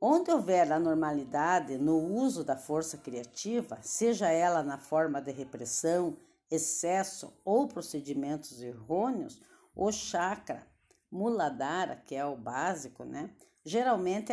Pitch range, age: 145-200 Hz, 50-69